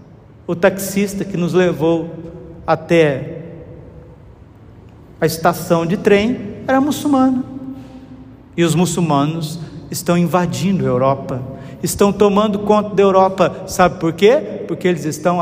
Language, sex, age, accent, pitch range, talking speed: Portuguese, male, 50-69, Brazilian, 145-200 Hz, 115 wpm